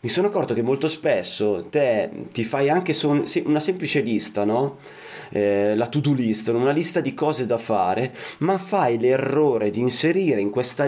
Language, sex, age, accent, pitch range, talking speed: Italian, male, 30-49, native, 115-165 Hz, 170 wpm